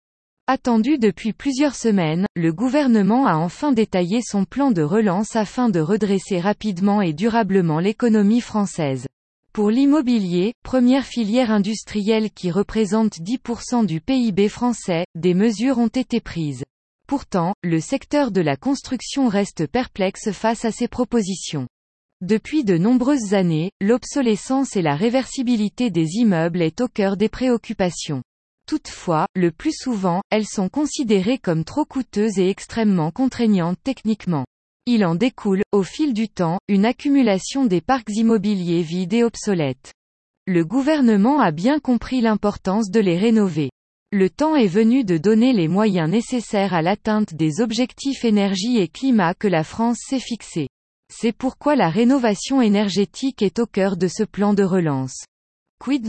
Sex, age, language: female, 20-39, French